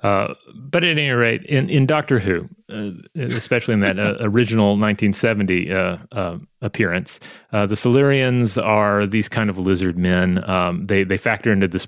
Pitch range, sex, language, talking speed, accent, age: 95-115 Hz, male, English, 170 wpm, American, 30-49